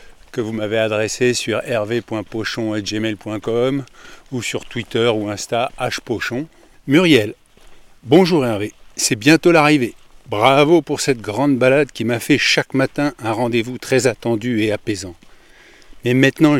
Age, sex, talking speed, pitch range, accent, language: 50-69, male, 130 wpm, 110-140 Hz, French, French